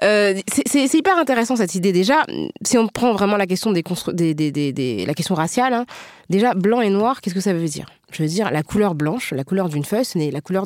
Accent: French